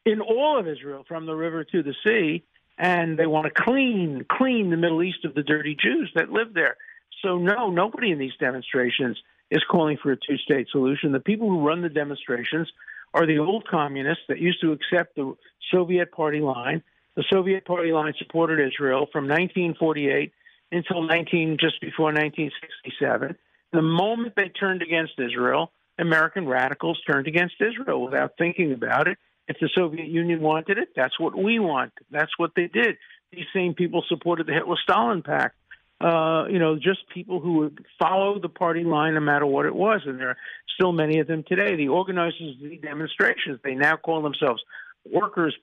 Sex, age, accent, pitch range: male, 50-69, American, 150-185 Hz